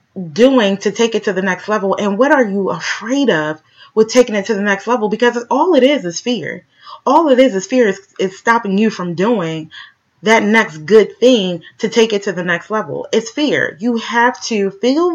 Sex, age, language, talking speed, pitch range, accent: female, 30-49, English, 215 wpm, 220-315 Hz, American